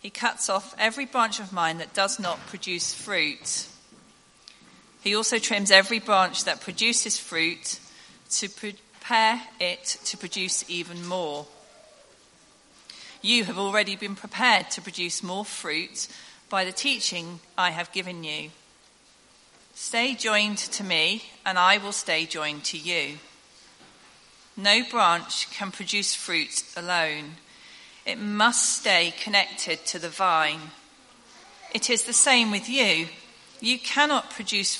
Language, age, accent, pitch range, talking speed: English, 40-59, British, 175-225 Hz, 130 wpm